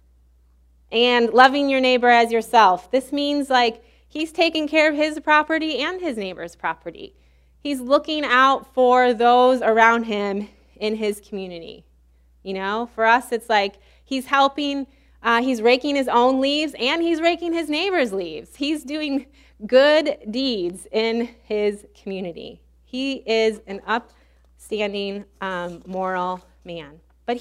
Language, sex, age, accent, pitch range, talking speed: English, female, 20-39, American, 160-250 Hz, 140 wpm